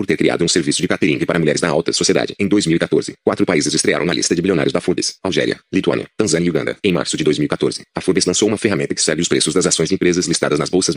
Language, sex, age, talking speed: Portuguese, male, 30-49, 265 wpm